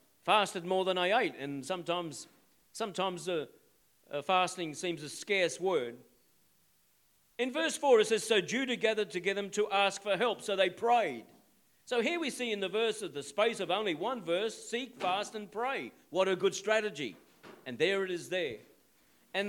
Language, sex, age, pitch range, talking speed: English, male, 50-69, 185-230 Hz, 180 wpm